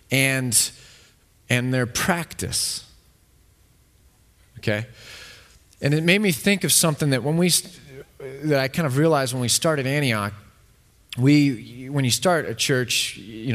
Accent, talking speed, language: American, 135 wpm, English